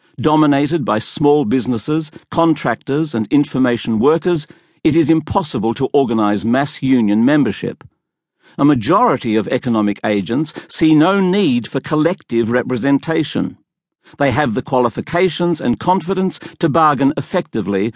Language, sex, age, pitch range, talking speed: English, male, 50-69, 120-170 Hz, 120 wpm